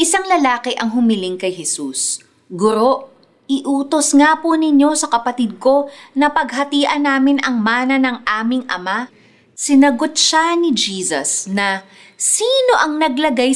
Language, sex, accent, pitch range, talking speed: Filipino, female, native, 205-295 Hz, 135 wpm